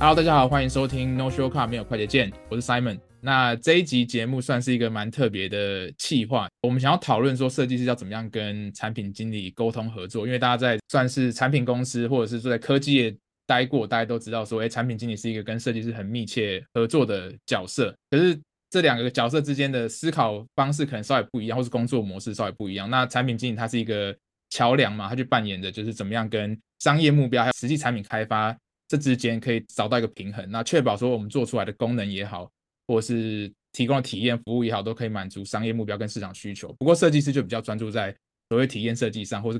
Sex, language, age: male, Chinese, 20-39